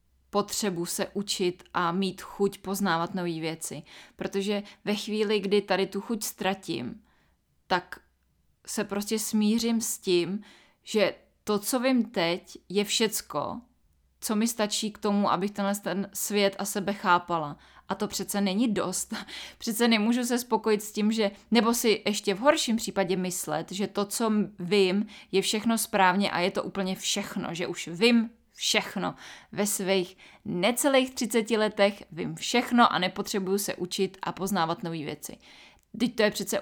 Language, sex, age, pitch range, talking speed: Czech, female, 20-39, 185-215 Hz, 155 wpm